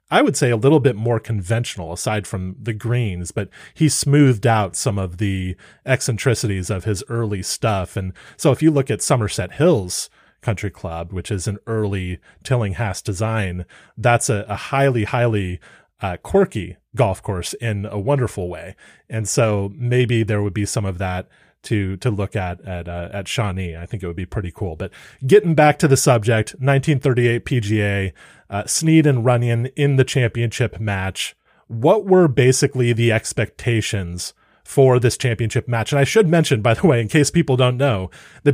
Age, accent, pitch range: 30-49, American, 100-130 Hz